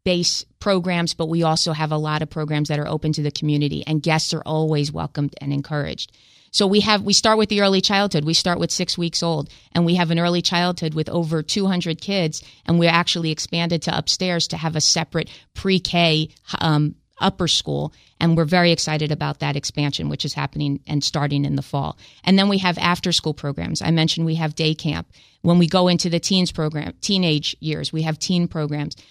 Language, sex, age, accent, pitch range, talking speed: English, female, 30-49, American, 155-175 Hz, 210 wpm